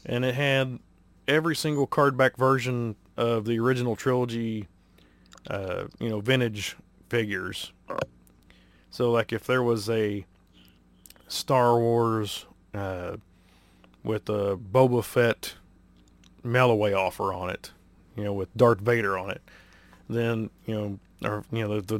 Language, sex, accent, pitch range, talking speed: English, male, American, 100-120 Hz, 130 wpm